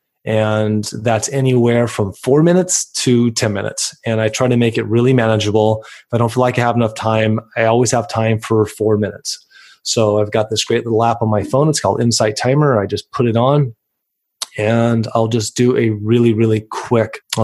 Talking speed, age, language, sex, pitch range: 210 wpm, 20-39, English, male, 105-120 Hz